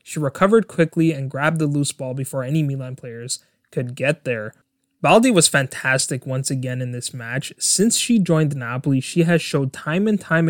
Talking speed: 190 wpm